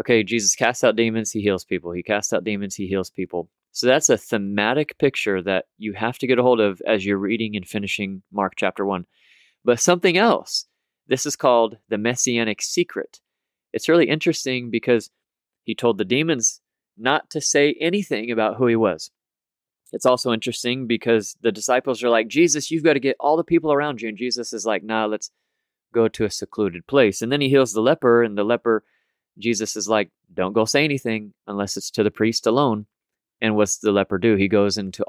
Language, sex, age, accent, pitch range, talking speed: English, male, 30-49, American, 100-130 Hz, 205 wpm